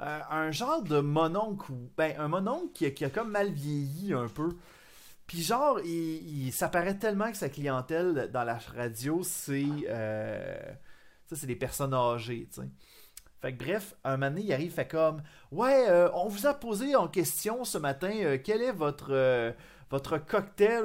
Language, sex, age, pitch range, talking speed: French, male, 30-49, 135-190 Hz, 185 wpm